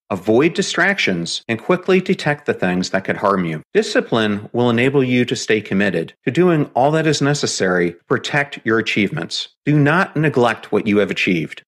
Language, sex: English, male